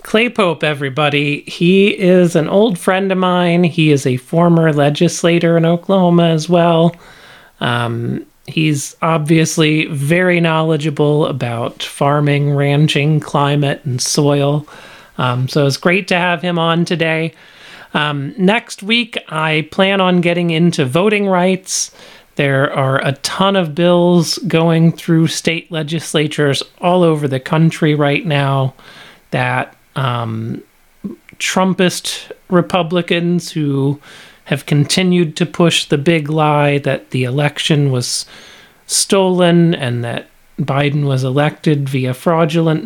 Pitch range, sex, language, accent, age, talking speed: 145-170 Hz, male, English, American, 30-49, 125 wpm